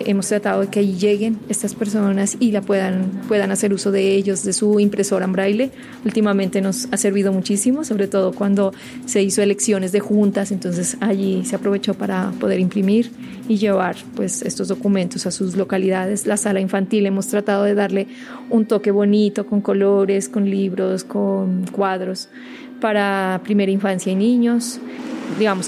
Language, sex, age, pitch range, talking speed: Spanish, female, 30-49, 195-220 Hz, 165 wpm